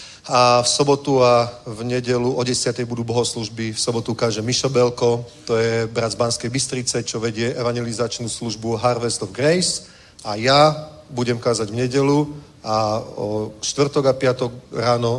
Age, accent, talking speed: 40-59, native, 155 wpm